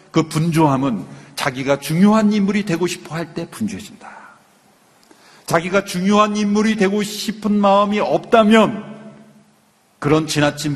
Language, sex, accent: Korean, male, native